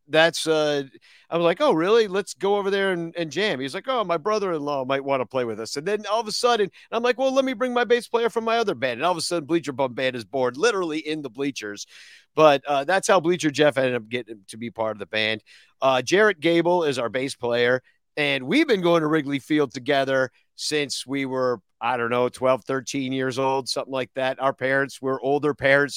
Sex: male